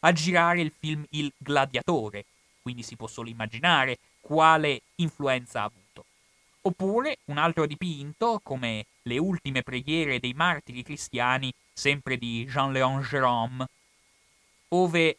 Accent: native